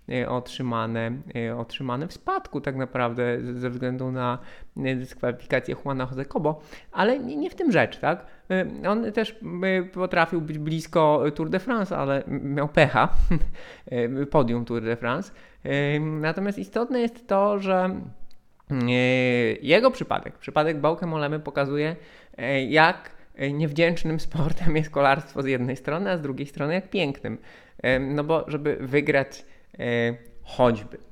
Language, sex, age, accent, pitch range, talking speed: Polish, male, 20-39, native, 125-160 Hz, 120 wpm